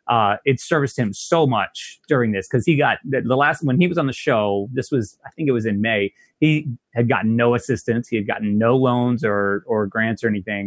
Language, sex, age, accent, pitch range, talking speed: English, male, 30-49, American, 105-130 Hz, 240 wpm